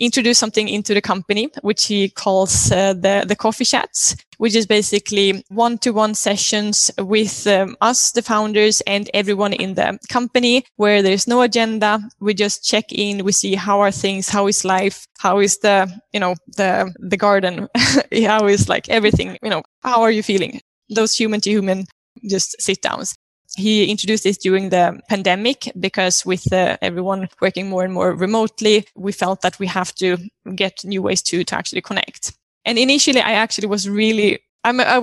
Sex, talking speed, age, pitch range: female, 185 wpm, 10-29, 195-220 Hz